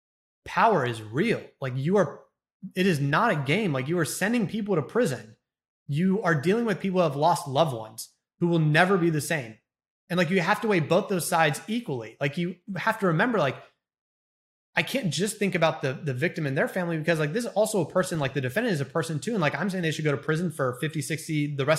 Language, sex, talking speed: English, male, 245 wpm